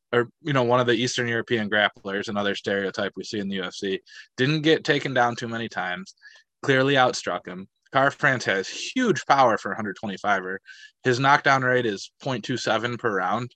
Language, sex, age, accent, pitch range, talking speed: English, male, 20-39, American, 105-135 Hz, 175 wpm